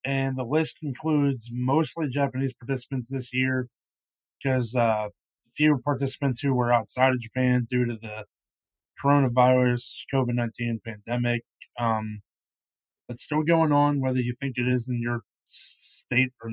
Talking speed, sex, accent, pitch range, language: 140 wpm, male, American, 120-140 Hz, English